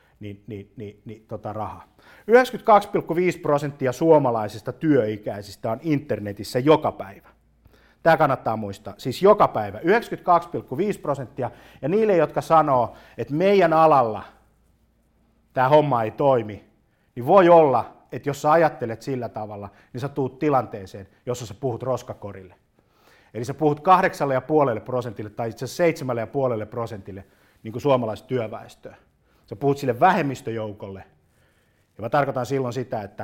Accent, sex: native, male